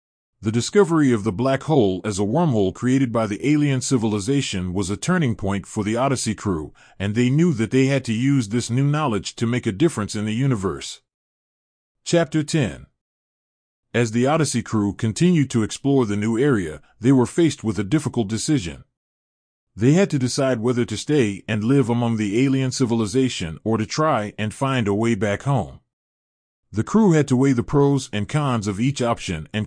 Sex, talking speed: male, 190 wpm